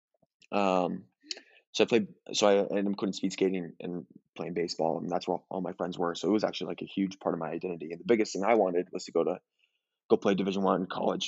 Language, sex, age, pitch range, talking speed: English, male, 20-39, 95-105 Hz, 255 wpm